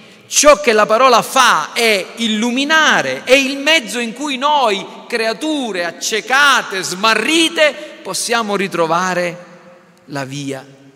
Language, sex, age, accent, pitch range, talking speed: Italian, male, 50-69, native, 140-220 Hz, 110 wpm